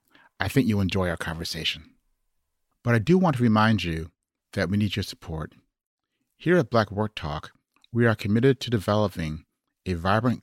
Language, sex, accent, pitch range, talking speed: English, male, American, 90-120 Hz, 175 wpm